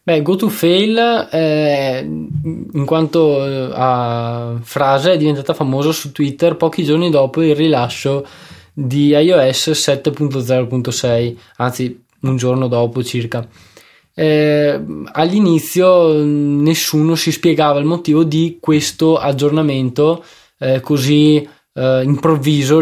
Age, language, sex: 20-39, Italian, male